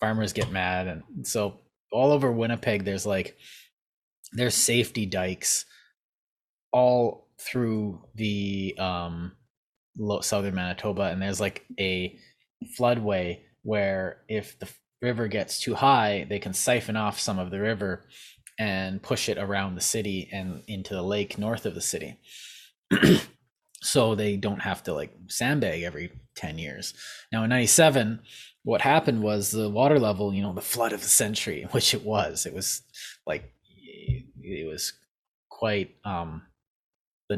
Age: 20-39